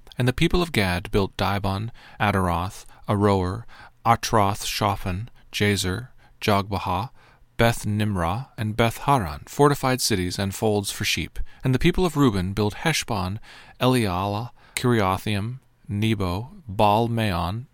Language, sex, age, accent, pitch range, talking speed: English, male, 40-59, American, 100-125 Hz, 110 wpm